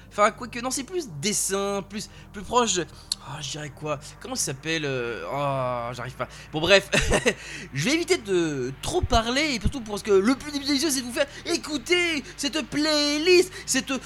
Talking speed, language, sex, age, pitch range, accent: 200 wpm, French, male, 20-39, 180-295 Hz, French